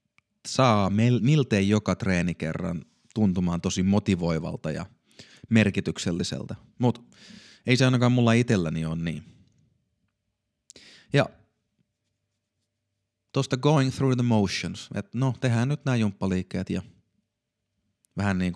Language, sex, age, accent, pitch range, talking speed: Finnish, male, 30-49, native, 95-120 Hz, 105 wpm